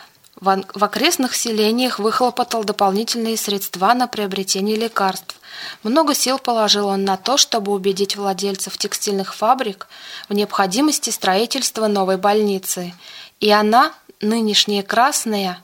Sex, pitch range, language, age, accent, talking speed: female, 195-230 Hz, Russian, 20-39, native, 110 wpm